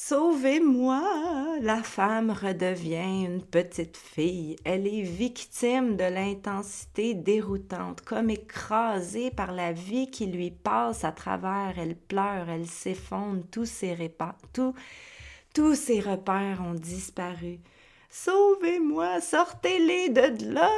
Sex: female